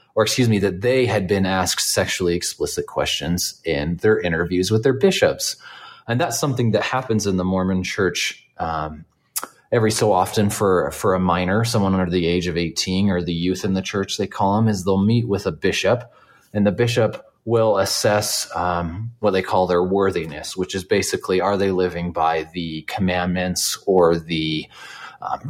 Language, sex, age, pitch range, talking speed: English, male, 30-49, 90-110 Hz, 185 wpm